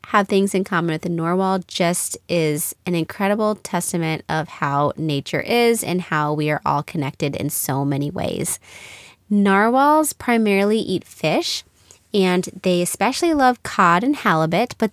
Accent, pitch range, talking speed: American, 170-220 Hz, 155 wpm